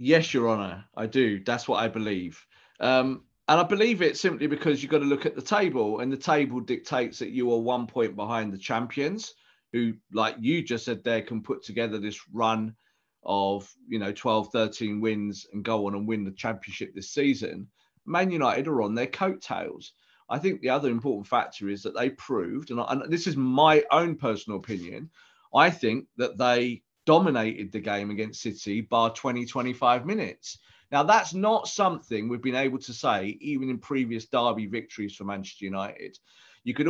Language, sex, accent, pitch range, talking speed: English, male, British, 110-145 Hz, 185 wpm